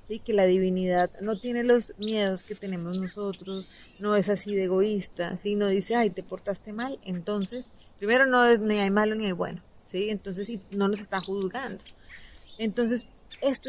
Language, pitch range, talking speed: Spanish, 190-225 Hz, 185 wpm